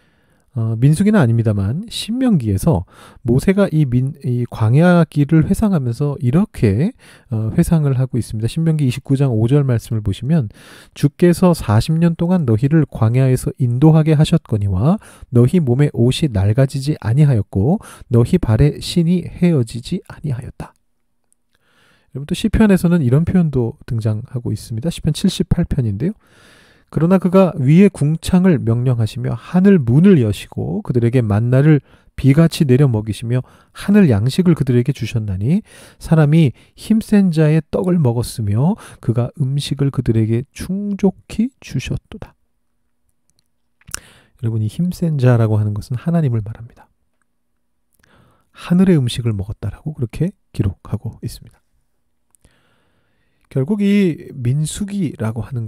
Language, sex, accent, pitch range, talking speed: English, male, Korean, 115-170 Hz, 90 wpm